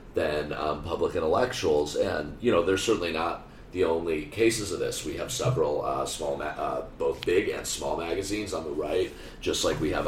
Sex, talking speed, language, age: male, 210 wpm, English, 30-49